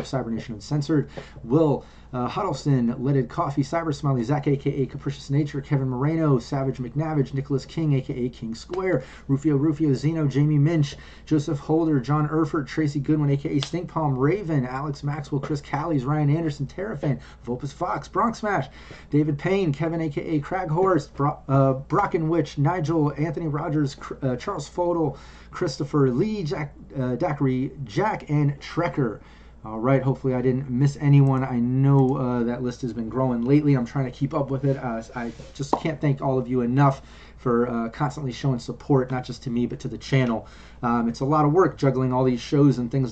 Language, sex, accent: English, male, American